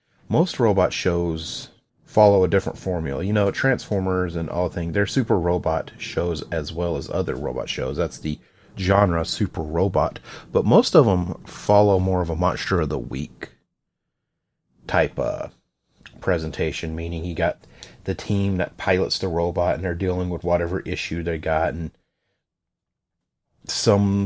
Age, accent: 30-49, American